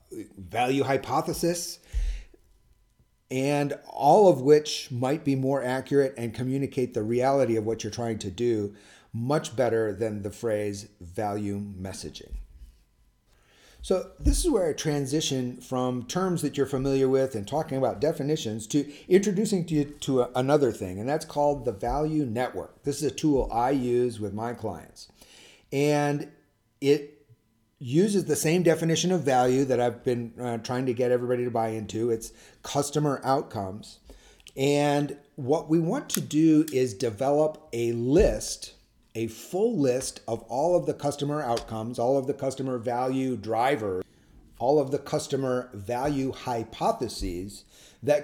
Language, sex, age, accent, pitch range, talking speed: English, male, 40-59, American, 115-150 Hz, 145 wpm